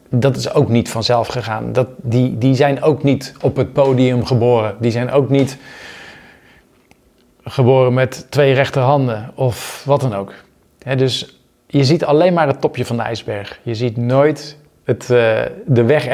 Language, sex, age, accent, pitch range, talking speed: Dutch, male, 50-69, Dutch, 115-140 Hz, 170 wpm